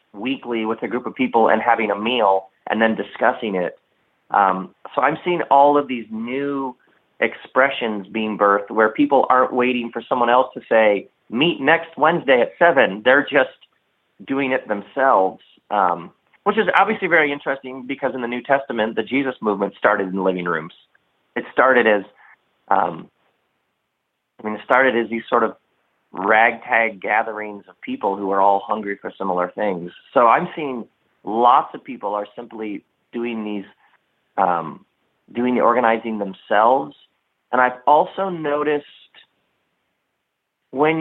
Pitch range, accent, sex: 105-140 Hz, American, male